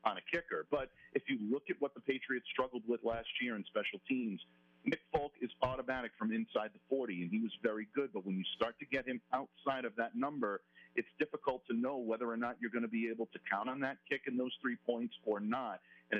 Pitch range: 105-135 Hz